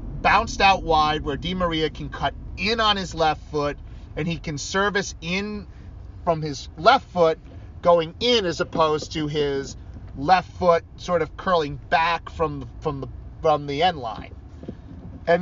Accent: American